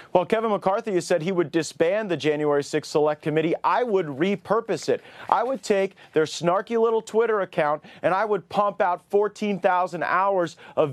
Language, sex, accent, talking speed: English, male, American, 180 wpm